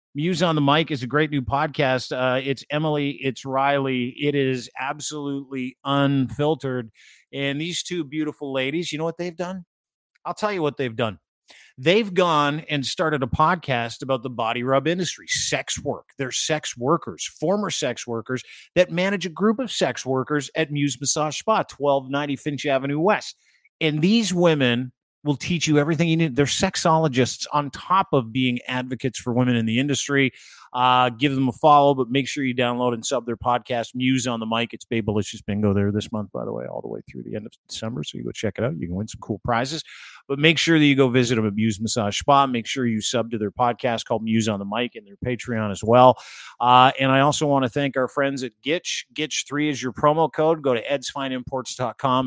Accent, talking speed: American, 210 wpm